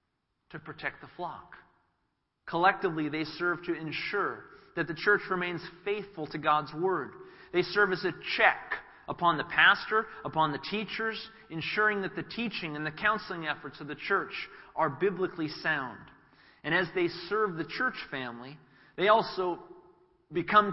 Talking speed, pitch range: 150 wpm, 150-190 Hz